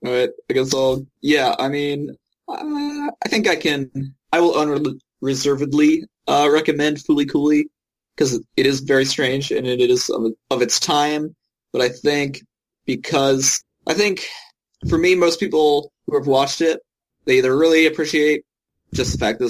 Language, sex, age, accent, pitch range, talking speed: English, male, 20-39, American, 115-160 Hz, 165 wpm